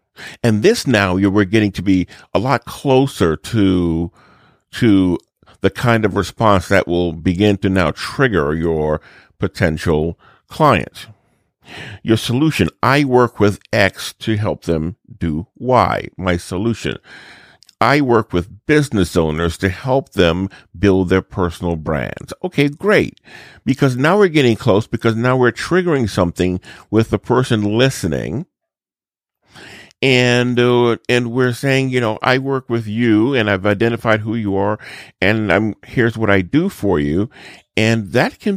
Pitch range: 95-130 Hz